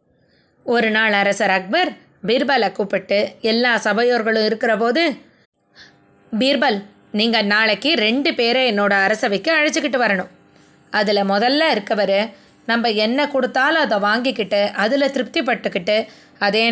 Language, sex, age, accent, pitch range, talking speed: Tamil, female, 20-39, native, 215-290 Hz, 110 wpm